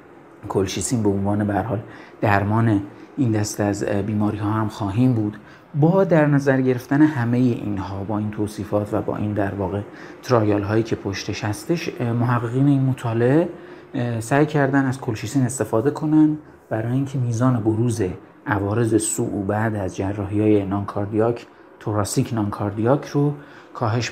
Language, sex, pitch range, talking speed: Persian, male, 105-140 Hz, 145 wpm